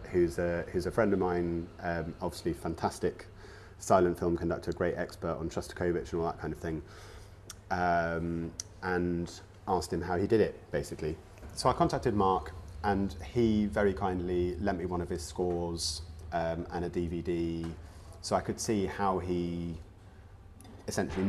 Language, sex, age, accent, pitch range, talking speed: English, male, 30-49, British, 85-100 Hz, 160 wpm